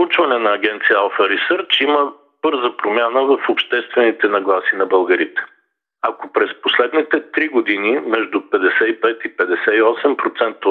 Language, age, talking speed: Bulgarian, 50-69, 125 wpm